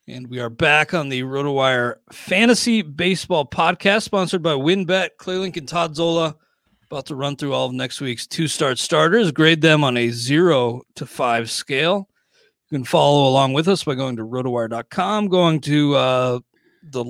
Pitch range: 130-180 Hz